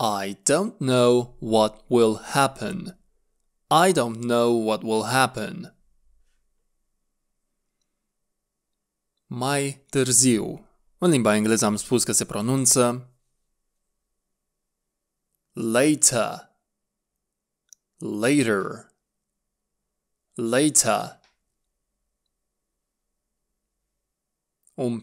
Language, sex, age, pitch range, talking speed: Romanian, male, 20-39, 110-135 Hz, 60 wpm